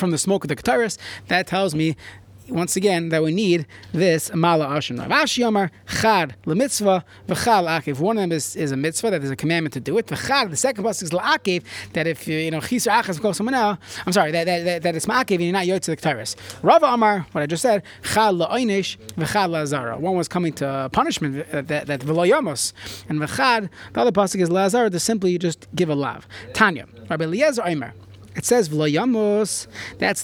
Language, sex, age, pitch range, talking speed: English, male, 30-49, 145-195 Hz, 190 wpm